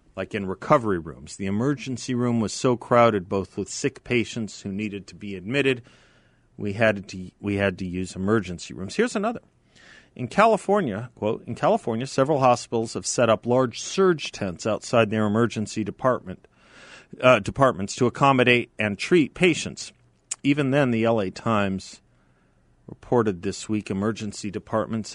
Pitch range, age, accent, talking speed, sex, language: 105-130 Hz, 40-59, American, 155 wpm, male, English